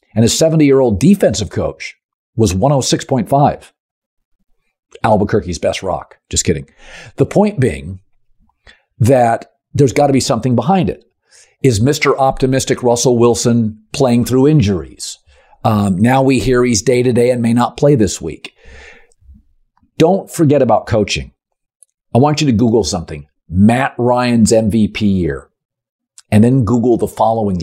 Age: 50-69